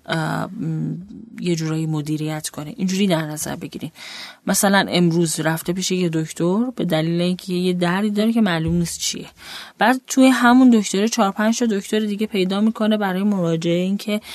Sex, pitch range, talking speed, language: female, 165-215 Hz, 155 wpm, Persian